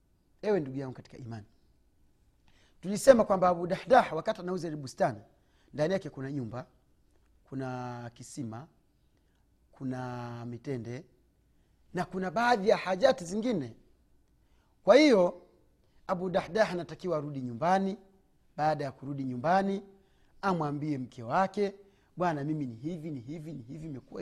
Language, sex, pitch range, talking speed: Swahili, male, 135-185 Hz, 115 wpm